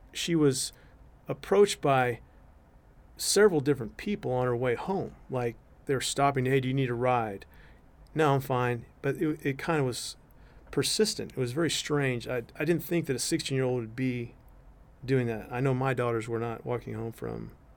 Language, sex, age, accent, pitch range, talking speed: English, male, 40-59, American, 120-145 Hz, 185 wpm